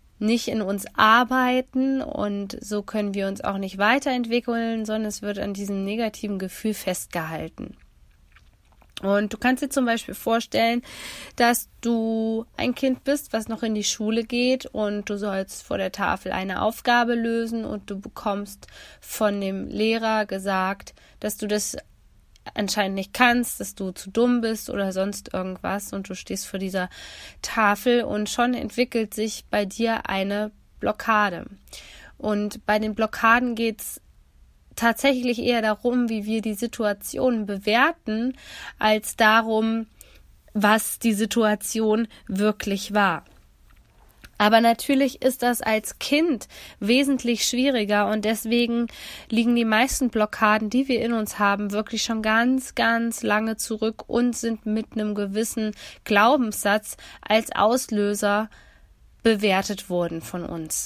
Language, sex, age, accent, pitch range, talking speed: German, female, 20-39, German, 205-235 Hz, 140 wpm